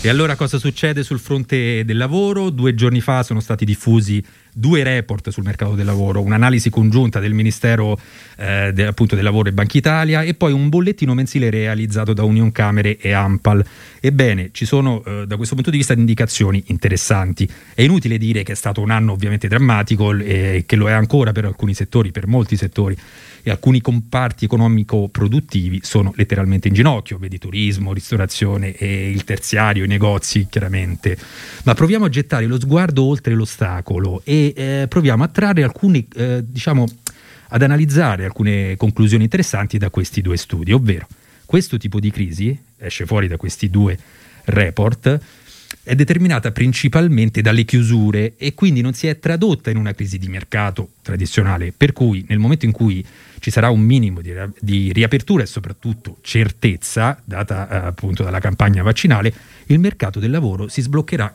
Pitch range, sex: 100-130 Hz, male